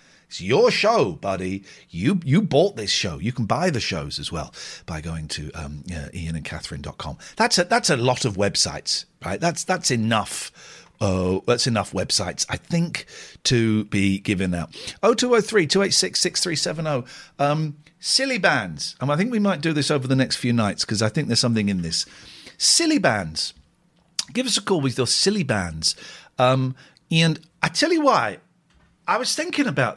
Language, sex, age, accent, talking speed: English, male, 50-69, British, 180 wpm